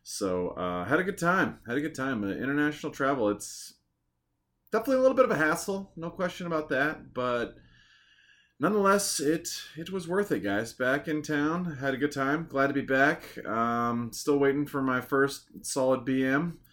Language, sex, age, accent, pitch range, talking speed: English, male, 20-39, American, 100-135 Hz, 185 wpm